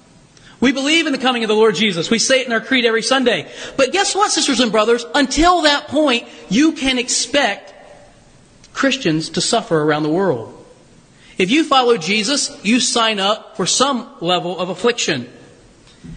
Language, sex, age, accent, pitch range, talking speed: English, male, 40-59, American, 175-275 Hz, 175 wpm